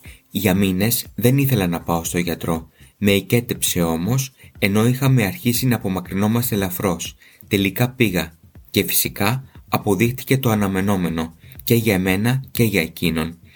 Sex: male